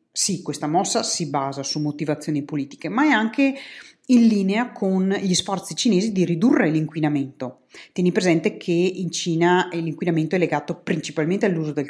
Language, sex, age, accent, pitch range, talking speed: Italian, female, 30-49, native, 155-210 Hz, 155 wpm